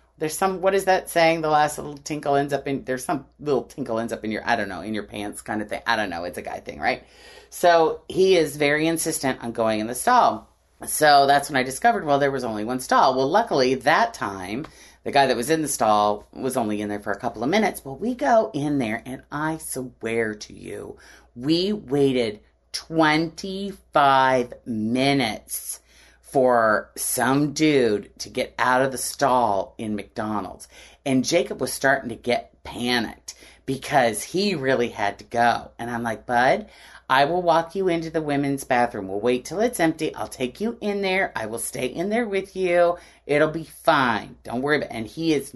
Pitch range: 115-165 Hz